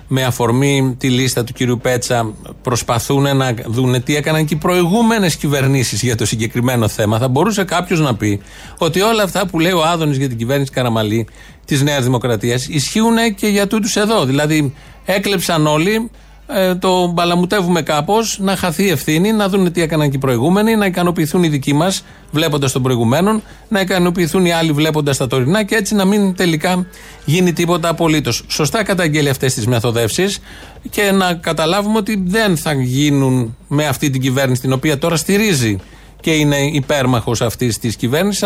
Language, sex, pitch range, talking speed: Greek, male, 130-180 Hz, 170 wpm